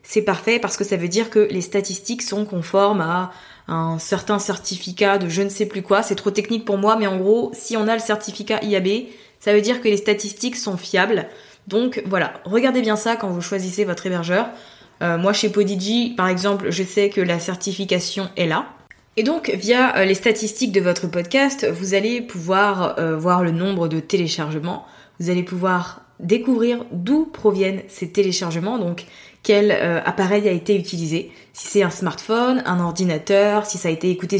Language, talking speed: French, 190 wpm